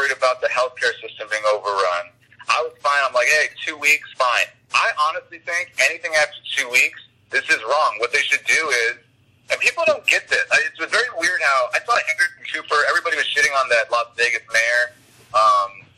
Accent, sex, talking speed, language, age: American, male, 195 wpm, English, 30-49